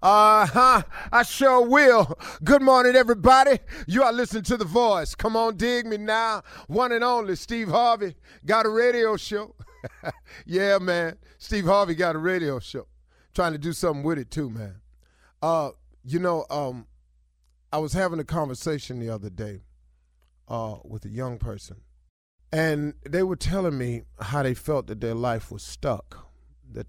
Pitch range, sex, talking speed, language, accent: 95-160 Hz, male, 165 wpm, English, American